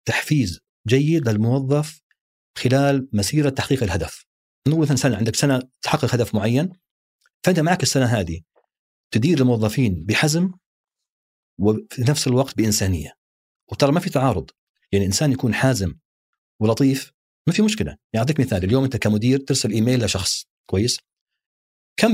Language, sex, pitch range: Arabic, male, 105-145 Hz